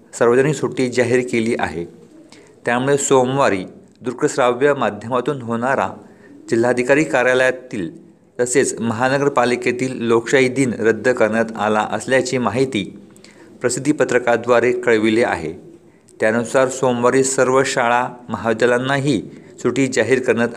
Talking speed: 95 wpm